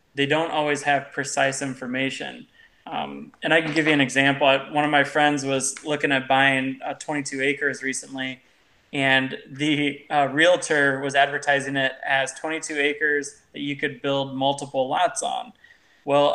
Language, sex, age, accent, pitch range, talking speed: English, male, 20-39, American, 135-155 Hz, 160 wpm